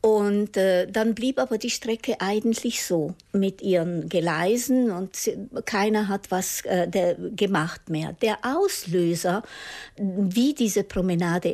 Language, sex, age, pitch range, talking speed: German, female, 60-79, 175-235 Hz, 130 wpm